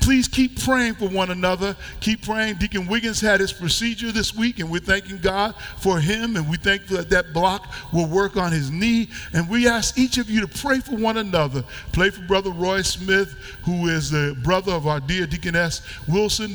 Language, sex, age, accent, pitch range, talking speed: English, male, 50-69, American, 165-210 Hz, 210 wpm